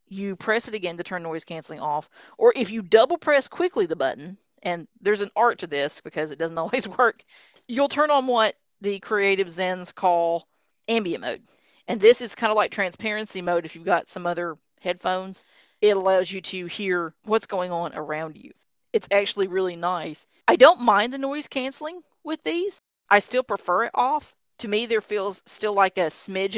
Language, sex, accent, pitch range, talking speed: English, female, American, 175-245 Hz, 195 wpm